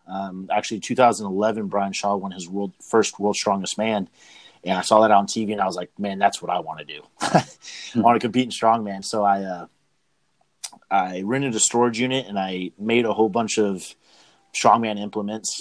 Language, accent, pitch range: English, American, 100-110 Hz